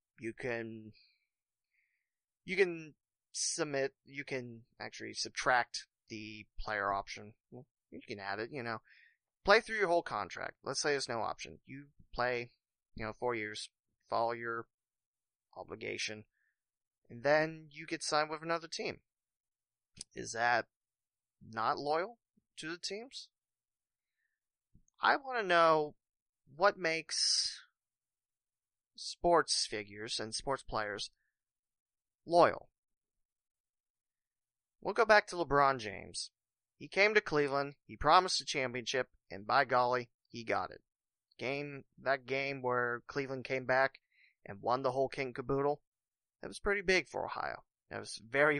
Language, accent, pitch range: English, American, 115-150 Hz